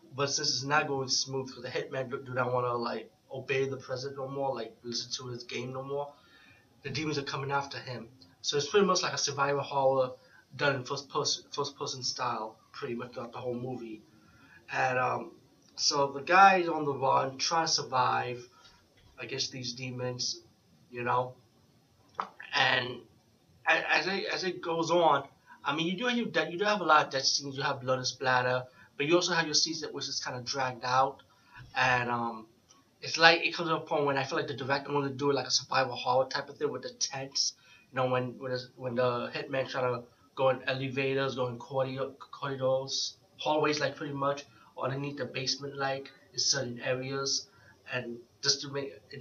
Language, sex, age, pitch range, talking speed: English, male, 30-49, 125-145 Hz, 200 wpm